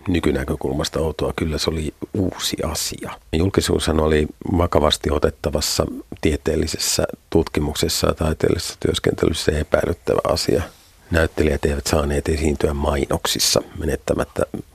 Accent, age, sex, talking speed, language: native, 50-69, male, 100 wpm, Finnish